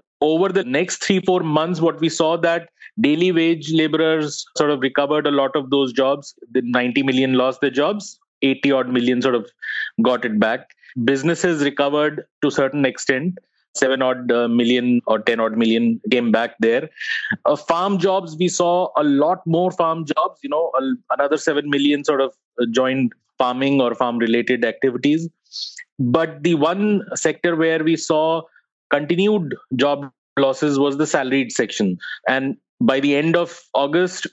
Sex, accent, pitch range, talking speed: male, Indian, 130-165 Hz, 165 wpm